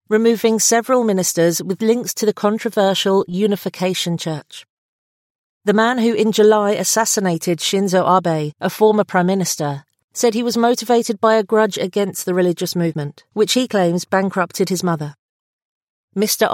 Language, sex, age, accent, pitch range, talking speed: English, female, 40-59, British, 175-220 Hz, 145 wpm